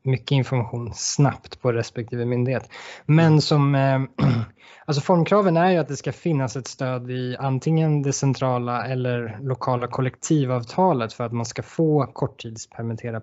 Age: 20-39